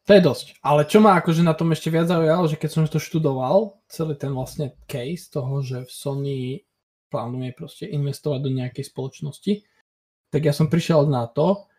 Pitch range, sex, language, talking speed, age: 135-160 Hz, male, Slovak, 190 wpm, 20-39